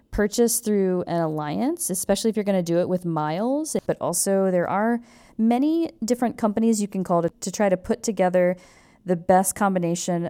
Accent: American